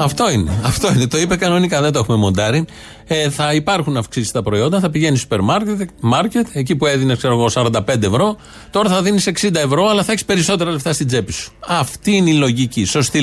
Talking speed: 205 wpm